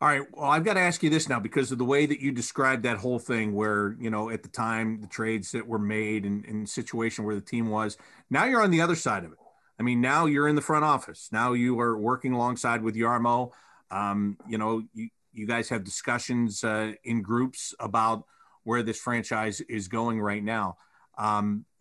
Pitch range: 110-125 Hz